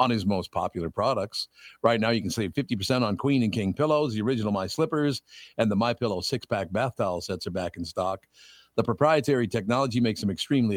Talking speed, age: 215 wpm, 50-69